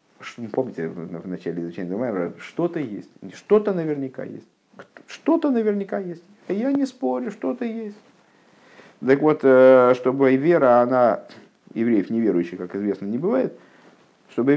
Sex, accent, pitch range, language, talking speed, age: male, native, 110-165 Hz, Russian, 125 wpm, 50-69